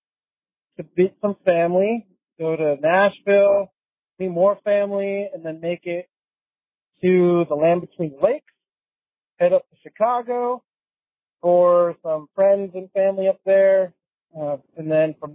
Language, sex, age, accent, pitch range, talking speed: English, male, 40-59, American, 155-190 Hz, 135 wpm